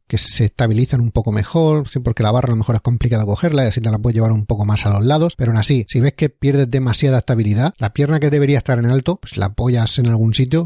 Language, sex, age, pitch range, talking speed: Spanish, male, 30-49, 115-140 Hz, 280 wpm